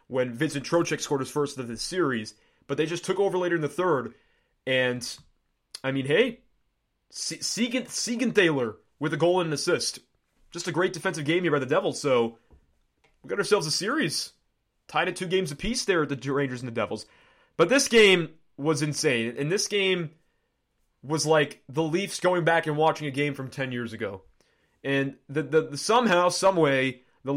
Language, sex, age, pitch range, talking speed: English, male, 20-39, 145-195 Hz, 185 wpm